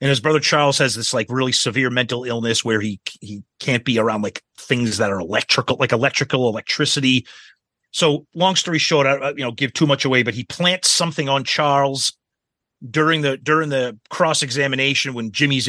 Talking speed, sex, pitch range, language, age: 190 wpm, male, 120-150 Hz, English, 30-49